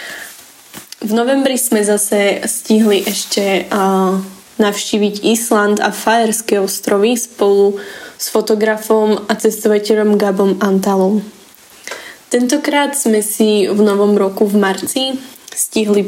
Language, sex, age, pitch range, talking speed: Slovak, female, 10-29, 205-225 Hz, 105 wpm